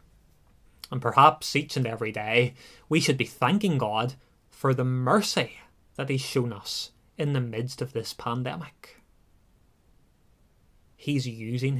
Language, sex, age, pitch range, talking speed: English, male, 20-39, 125-170 Hz, 130 wpm